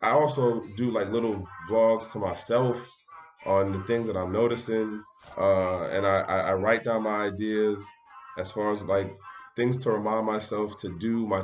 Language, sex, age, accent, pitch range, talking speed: English, male, 20-39, American, 95-115 Hz, 175 wpm